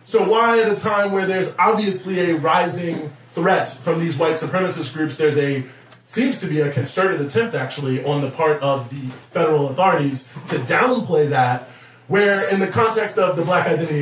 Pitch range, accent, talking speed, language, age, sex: 145-185 Hz, American, 185 wpm, English, 20-39, male